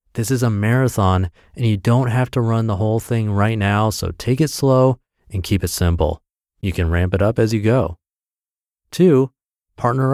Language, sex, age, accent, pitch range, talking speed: English, male, 30-49, American, 90-125 Hz, 195 wpm